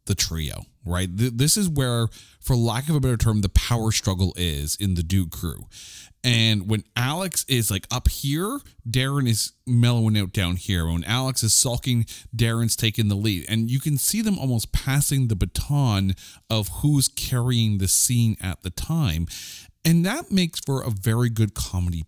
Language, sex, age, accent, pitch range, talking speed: English, male, 40-59, American, 95-125 Hz, 180 wpm